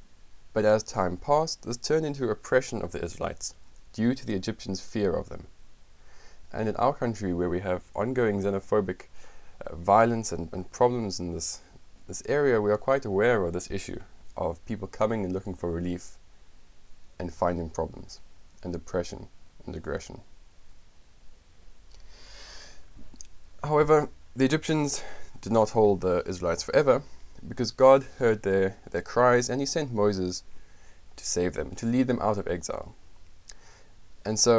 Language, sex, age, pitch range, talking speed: English, male, 20-39, 85-115 Hz, 150 wpm